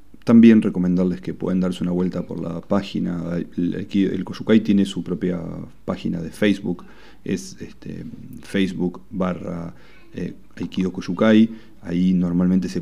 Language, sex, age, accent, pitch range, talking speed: Spanish, male, 40-59, Argentinian, 85-95 Hz, 125 wpm